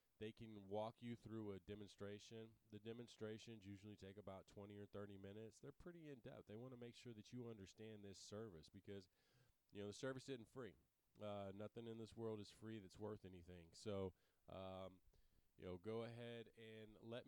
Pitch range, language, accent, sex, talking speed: 100-115 Hz, English, American, male, 190 wpm